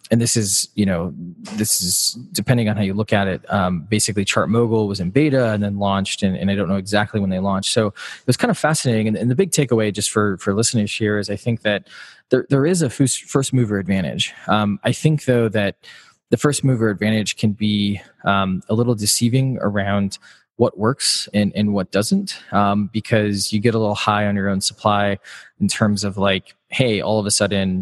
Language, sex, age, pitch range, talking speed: English, male, 20-39, 100-115 Hz, 220 wpm